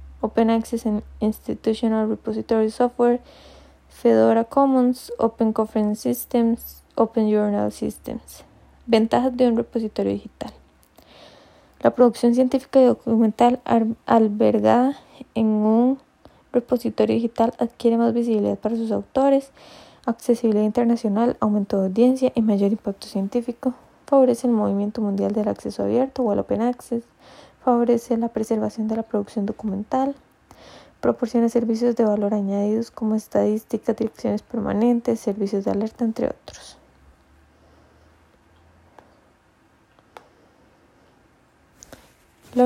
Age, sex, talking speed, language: 20-39, female, 105 wpm, Spanish